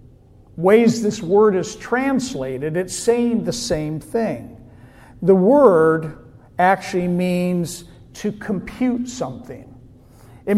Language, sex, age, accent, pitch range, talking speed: English, male, 50-69, American, 150-215 Hz, 100 wpm